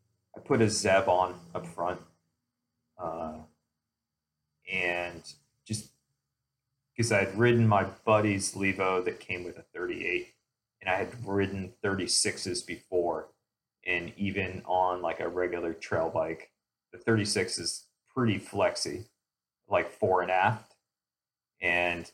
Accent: American